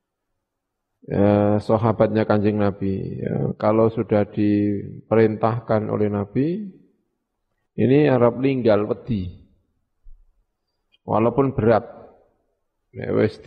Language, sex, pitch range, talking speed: Indonesian, male, 105-135 Hz, 70 wpm